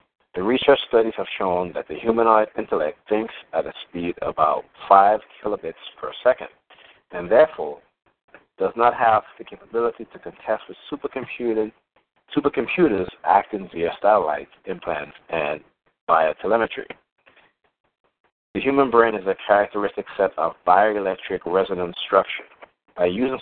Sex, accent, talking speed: male, American, 130 wpm